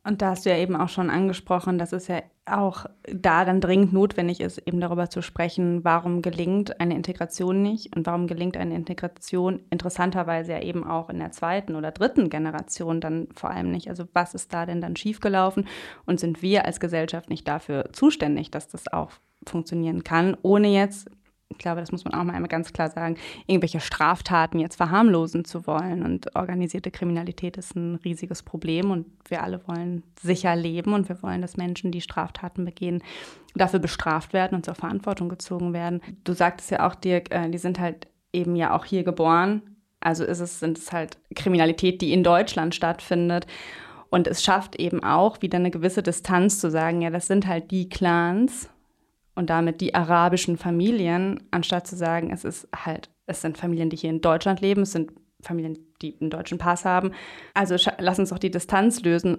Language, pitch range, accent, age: German, 170-185 Hz, German, 20-39